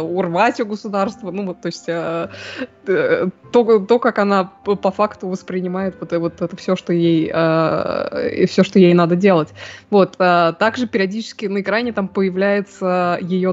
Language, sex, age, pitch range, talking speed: Russian, female, 20-39, 170-215 Hz, 165 wpm